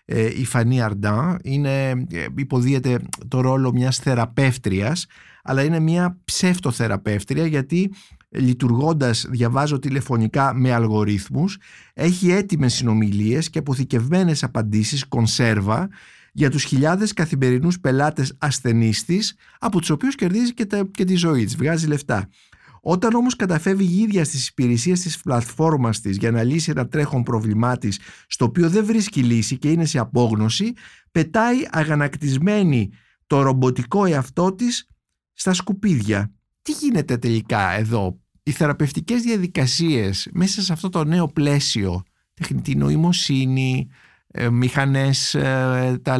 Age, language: 50-69, Greek